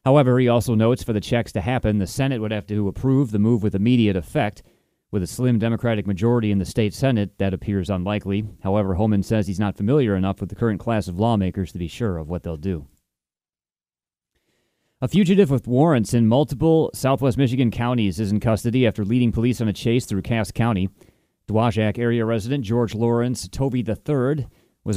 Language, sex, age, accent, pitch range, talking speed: English, male, 30-49, American, 100-125 Hz, 195 wpm